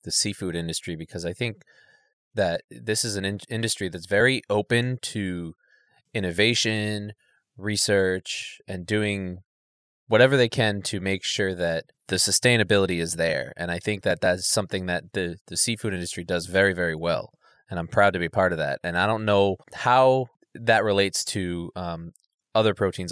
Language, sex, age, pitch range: English, male, 20-39, 85-105 Hz